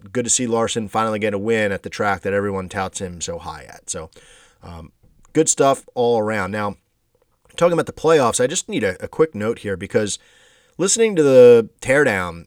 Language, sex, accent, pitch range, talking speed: English, male, American, 105-160 Hz, 200 wpm